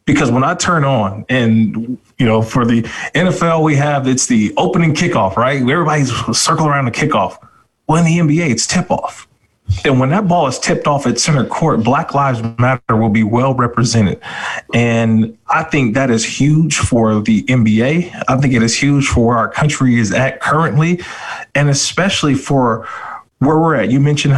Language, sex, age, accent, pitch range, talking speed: English, male, 20-39, American, 115-145 Hz, 185 wpm